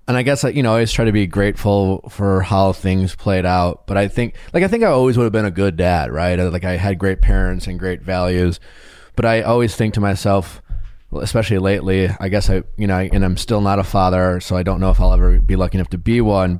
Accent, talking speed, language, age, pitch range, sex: American, 260 wpm, English, 20-39, 95-110 Hz, male